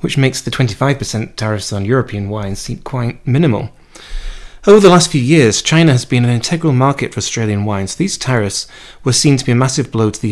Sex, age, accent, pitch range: male, 30-49, British, 110-140 Hz